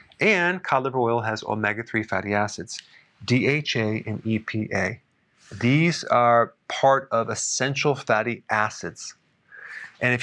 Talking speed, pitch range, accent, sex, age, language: 115 wpm, 110-135 Hz, American, male, 40-59, English